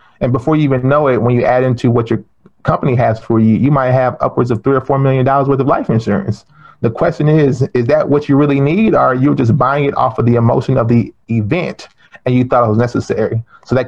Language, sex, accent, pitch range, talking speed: English, male, American, 120-145 Hz, 255 wpm